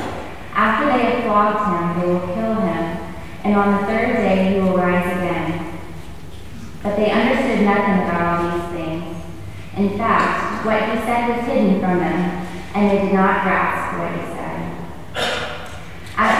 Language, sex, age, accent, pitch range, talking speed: English, female, 20-39, American, 175-220 Hz, 160 wpm